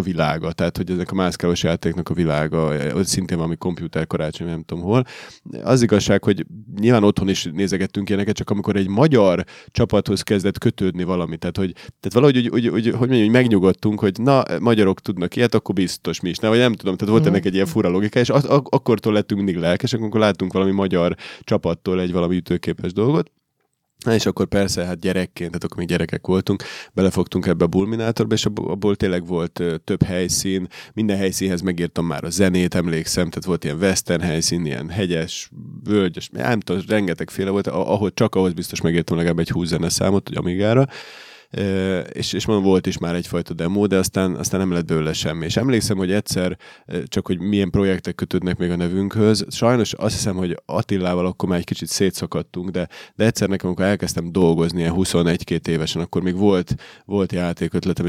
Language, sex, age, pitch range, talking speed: Hungarian, male, 20-39, 85-105 Hz, 185 wpm